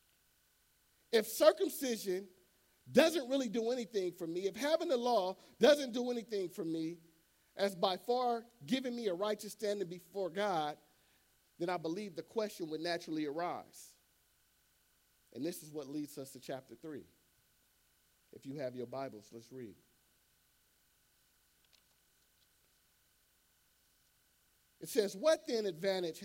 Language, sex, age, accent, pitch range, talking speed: English, male, 50-69, American, 125-200 Hz, 130 wpm